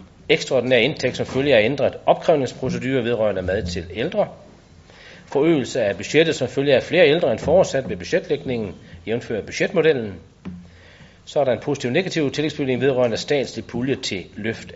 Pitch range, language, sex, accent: 90-130 Hz, Danish, male, native